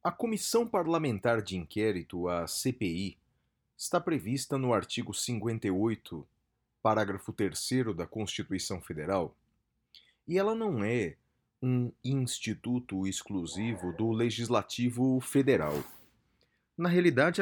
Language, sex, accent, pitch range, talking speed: Portuguese, male, Brazilian, 105-165 Hz, 100 wpm